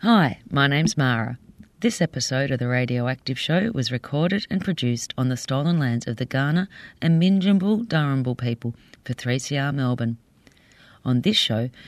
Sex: female